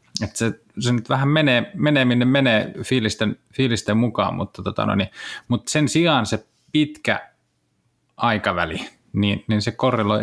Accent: native